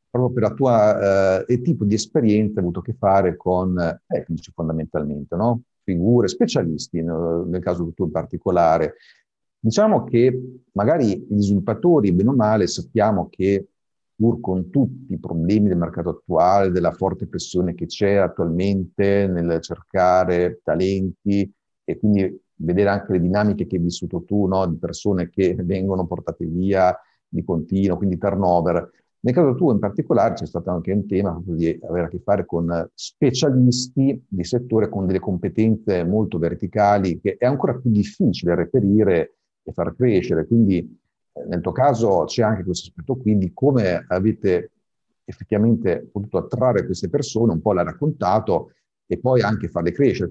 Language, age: Italian, 50-69